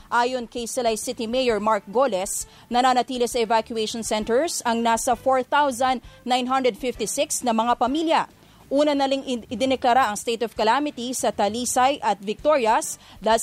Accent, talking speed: Filipino, 125 wpm